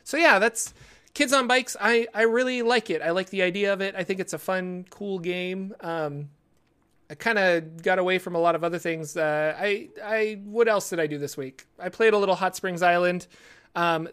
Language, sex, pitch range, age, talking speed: English, male, 165-195 Hz, 30-49, 230 wpm